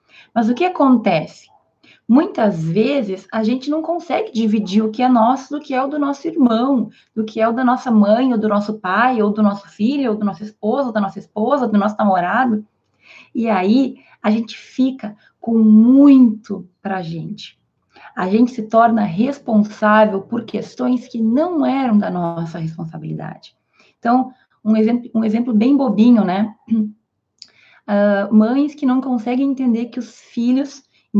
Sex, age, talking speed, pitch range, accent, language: female, 20-39, 170 wpm, 205-250 Hz, Brazilian, Portuguese